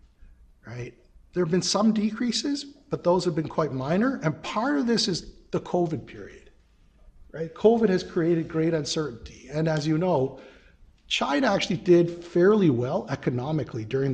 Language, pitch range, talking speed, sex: English, 130-170 Hz, 155 wpm, male